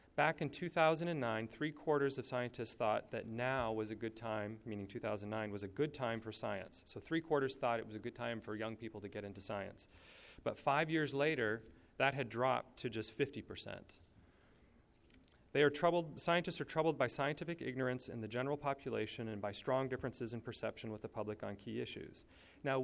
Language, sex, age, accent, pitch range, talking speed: English, male, 30-49, American, 110-140 Hz, 195 wpm